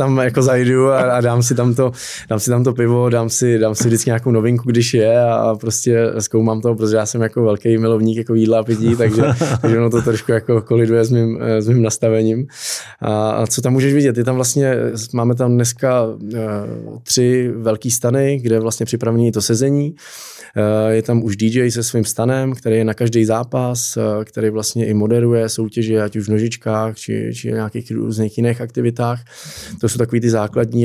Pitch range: 105-120 Hz